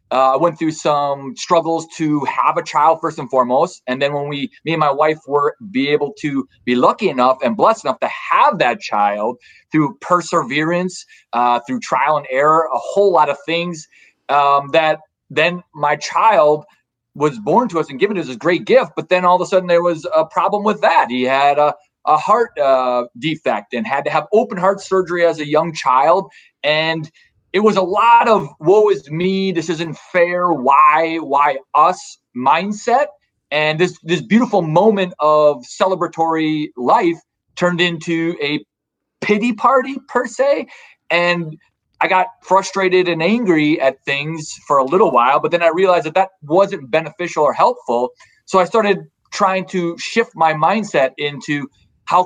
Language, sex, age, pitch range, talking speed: English, male, 30-49, 150-185 Hz, 175 wpm